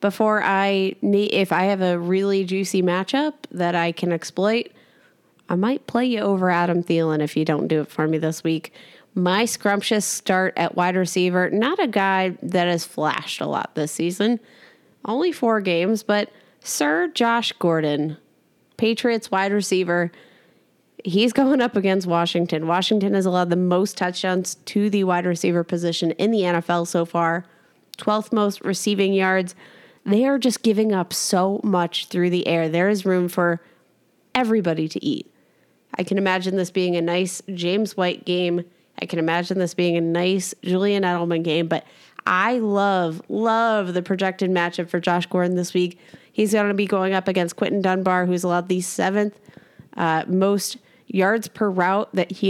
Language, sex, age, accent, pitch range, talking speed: English, female, 20-39, American, 175-210 Hz, 170 wpm